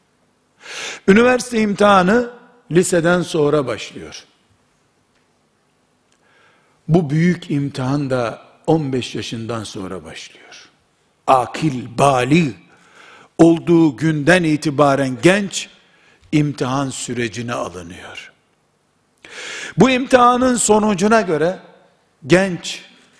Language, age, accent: Turkish, 60-79, native